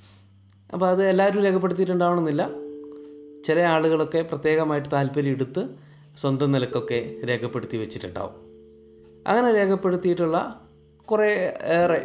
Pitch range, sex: 115-175 Hz, male